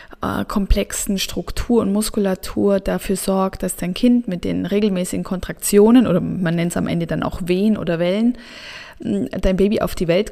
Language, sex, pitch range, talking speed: German, female, 190-230 Hz, 170 wpm